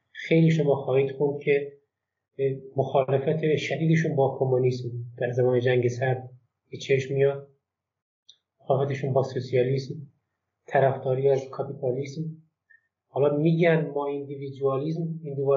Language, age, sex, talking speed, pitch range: Persian, 30-49, male, 95 wpm, 125-145 Hz